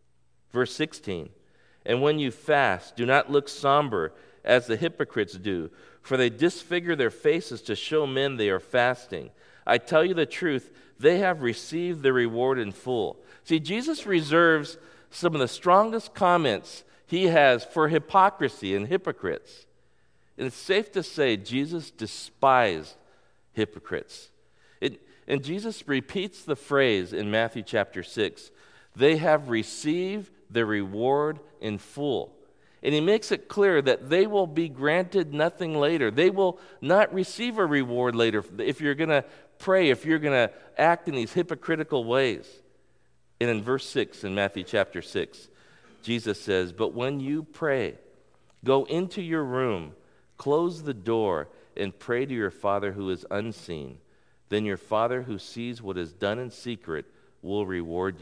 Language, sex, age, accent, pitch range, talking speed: English, male, 50-69, American, 115-170 Hz, 155 wpm